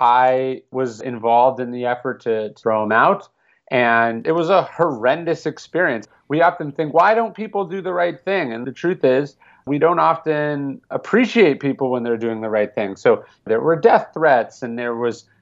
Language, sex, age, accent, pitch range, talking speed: English, male, 40-59, American, 125-170 Hz, 190 wpm